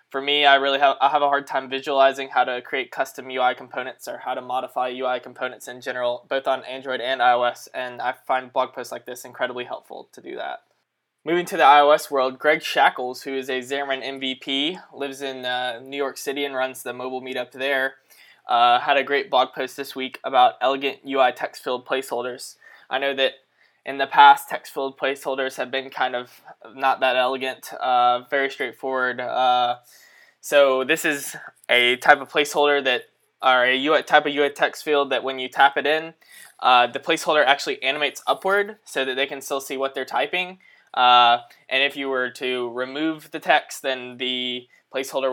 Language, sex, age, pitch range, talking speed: English, male, 10-29, 125-140 Hz, 190 wpm